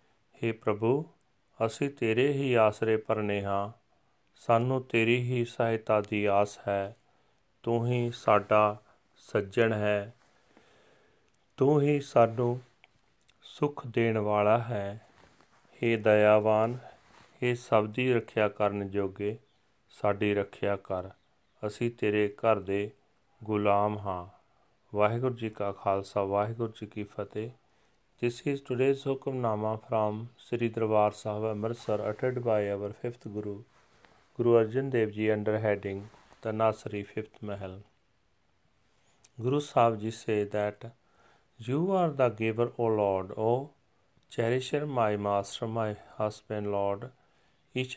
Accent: Indian